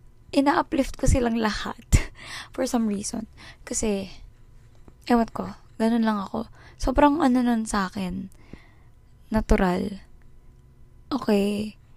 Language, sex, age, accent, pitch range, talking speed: Filipino, female, 20-39, native, 190-240 Hz, 105 wpm